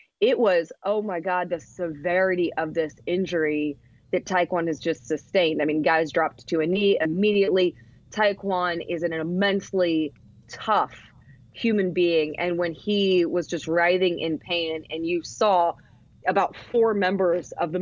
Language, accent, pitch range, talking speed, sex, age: English, American, 160-195 Hz, 155 wpm, female, 30-49